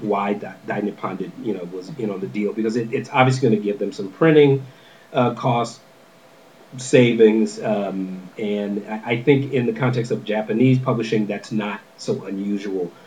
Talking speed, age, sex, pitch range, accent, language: 175 wpm, 40-59, male, 110-145 Hz, American, English